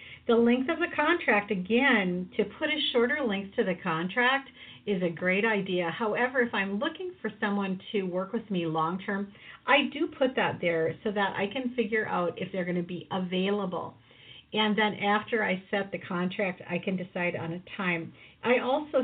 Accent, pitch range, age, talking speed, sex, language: American, 165-220 Hz, 50-69, 195 wpm, female, English